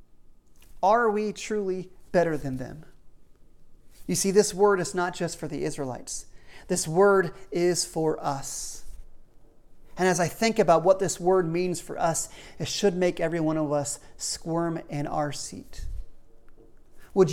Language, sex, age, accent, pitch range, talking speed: English, male, 40-59, American, 165-225 Hz, 150 wpm